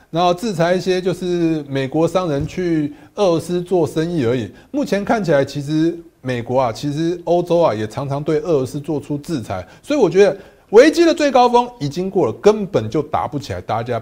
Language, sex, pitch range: Chinese, male, 140-220 Hz